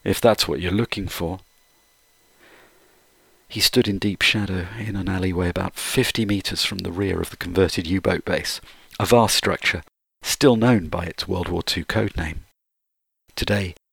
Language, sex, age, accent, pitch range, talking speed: English, male, 50-69, British, 90-105 Hz, 160 wpm